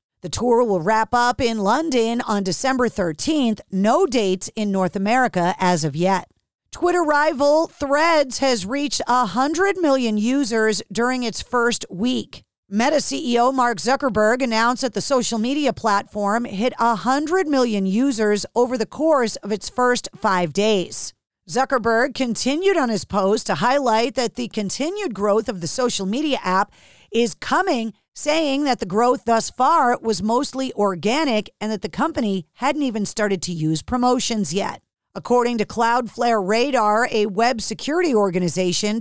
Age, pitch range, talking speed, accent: 40-59, 205-260 Hz, 150 wpm, American